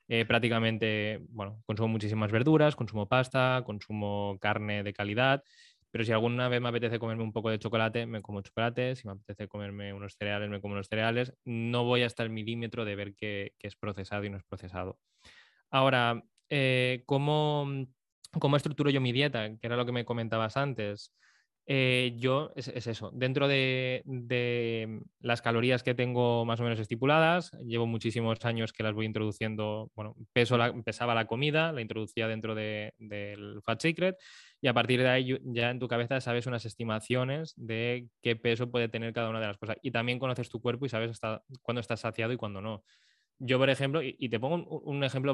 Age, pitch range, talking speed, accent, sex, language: 20-39, 110-130 Hz, 195 wpm, Spanish, male, Spanish